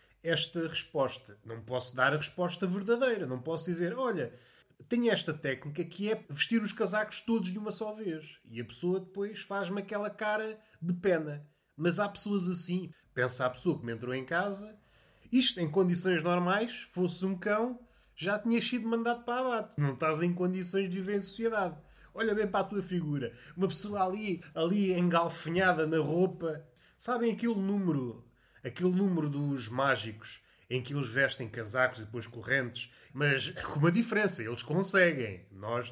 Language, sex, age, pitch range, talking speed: Portuguese, male, 20-39, 135-195 Hz, 170 wpm